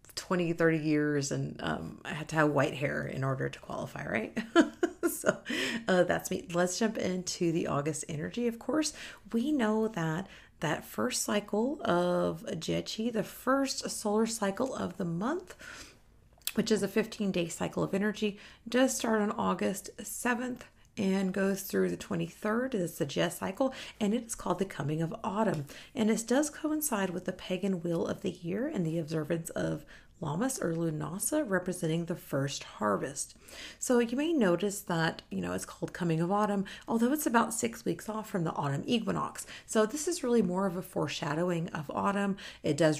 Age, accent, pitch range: 40-59, American, 165-225 Hz